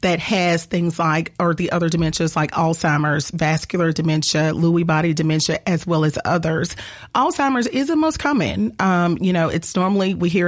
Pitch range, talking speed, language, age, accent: 170-210 Hz, 180 wpm, English, 30-49, American